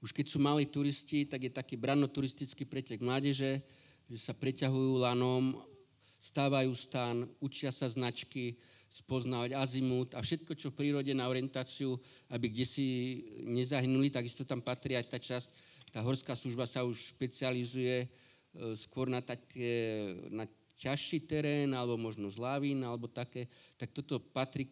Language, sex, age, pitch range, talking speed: Slovak, male, 50-69, 125-140 Hz, 150 wpm